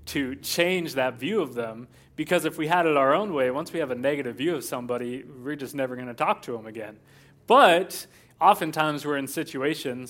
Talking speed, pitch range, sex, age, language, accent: 215 wpm, 125-155 Hz, male, 20-39, English, American